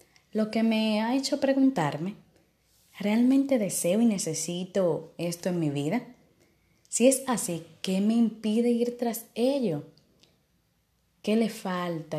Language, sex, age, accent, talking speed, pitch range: Spanish, female, 20-39, American, 130 wpm, 160-210 Hz